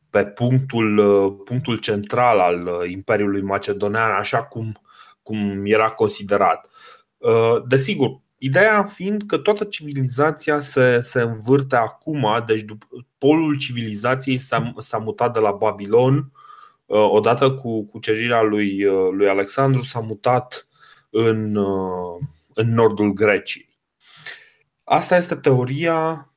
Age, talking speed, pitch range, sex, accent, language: 20-39, 110 wpm, 105-135 Hz, male, native, Romanian